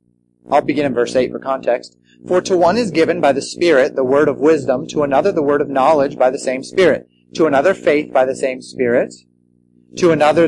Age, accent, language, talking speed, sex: 30-49, American, English, 220 wpm, male